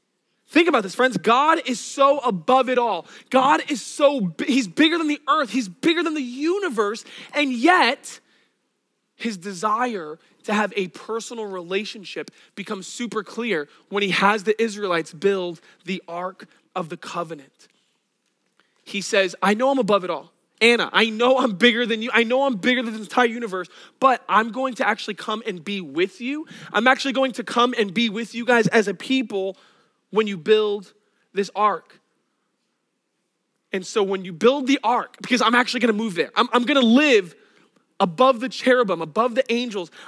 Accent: American